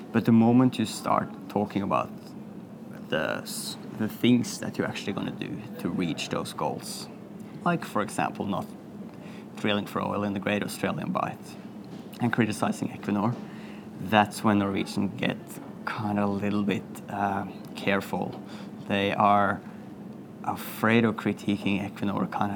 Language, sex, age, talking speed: English, male, 20-39, 140 wpm